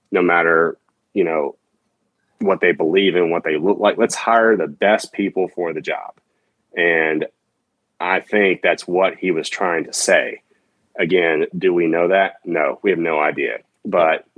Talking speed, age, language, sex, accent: 170 wpm, 30-49, English, male, American